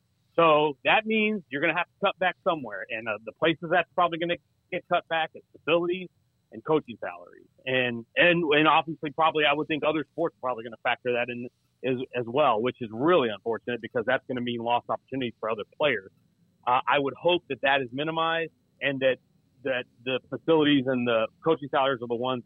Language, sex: English, male